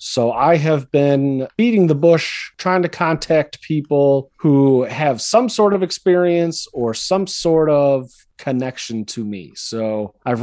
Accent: American